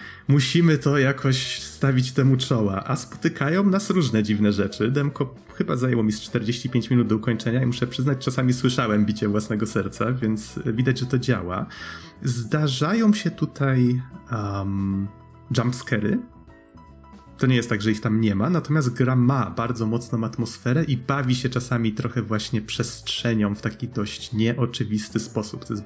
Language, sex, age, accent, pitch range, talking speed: Polish, male, 30-49, native, 110-135 Hz, 155 wpm